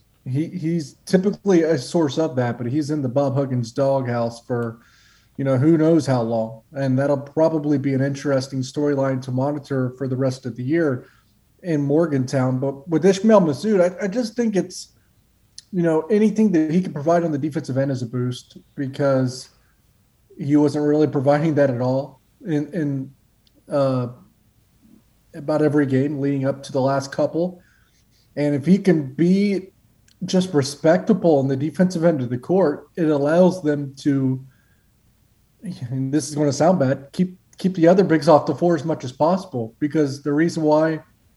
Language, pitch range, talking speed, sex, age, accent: English, 130-160 Hz, 180 wpm, male, 30-49, American